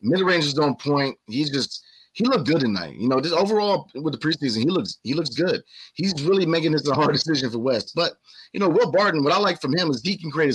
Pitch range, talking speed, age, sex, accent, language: 125-165 Hz, 260 wpm, 30-49, male, American, English